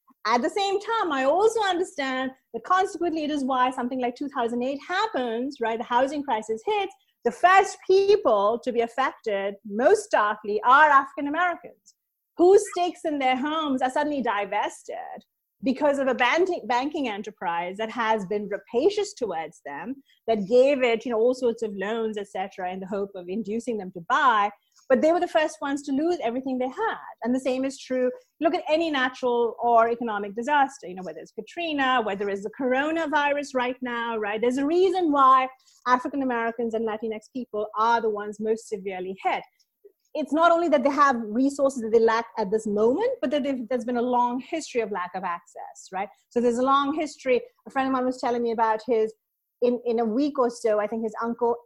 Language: English